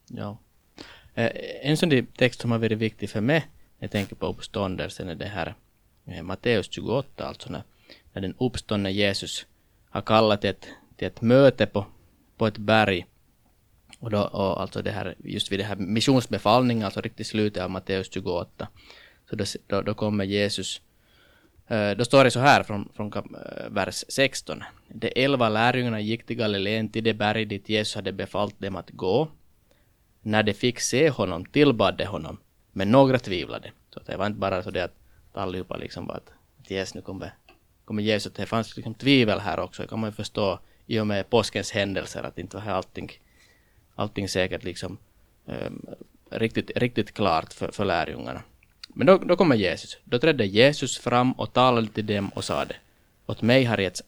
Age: 20-39